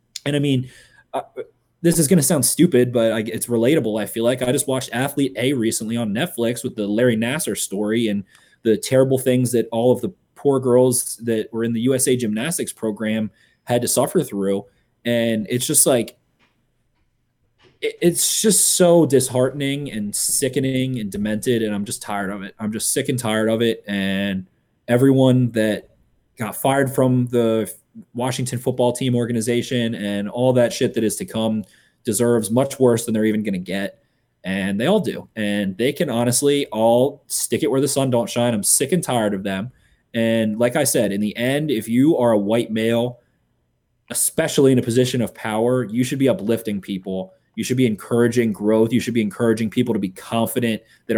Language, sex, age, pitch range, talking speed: English, male, 20-39, 110-130 Hz, 190 wpm